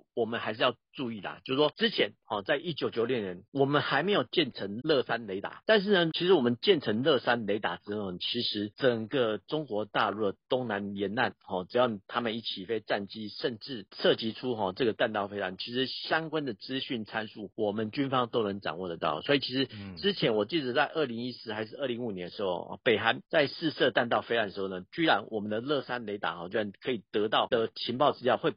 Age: 50-69